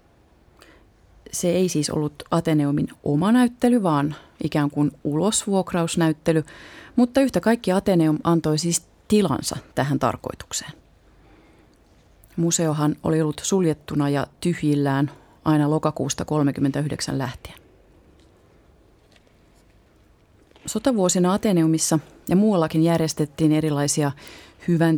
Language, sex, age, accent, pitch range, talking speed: Finnish, female, 30-49, native, 145-170 Hz, 90 wpm